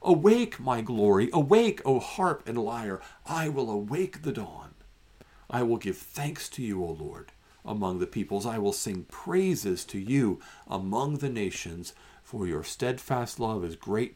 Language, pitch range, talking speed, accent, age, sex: English, 90-135 Hz, 175 wpm, American, 50-69, male